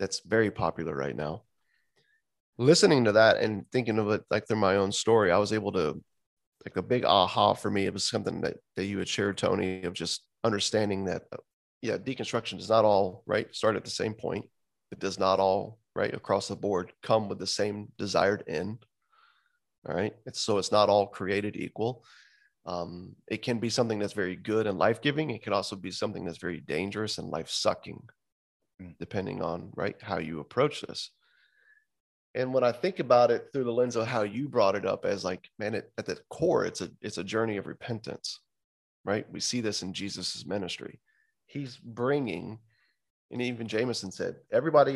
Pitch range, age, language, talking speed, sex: 95-115 Hz, 30-49, English, 190 wpm, male